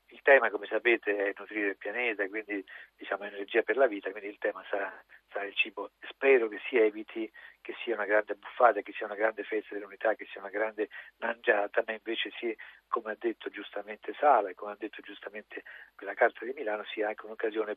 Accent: native